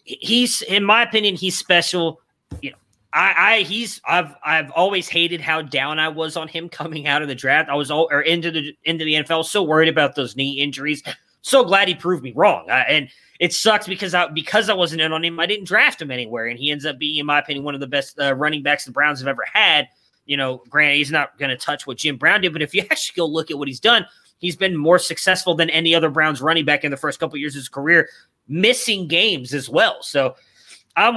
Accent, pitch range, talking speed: American, 145-185 Hz, 250 wpm